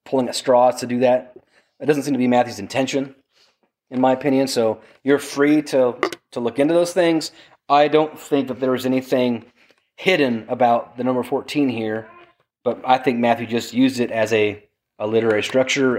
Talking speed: 190 wpm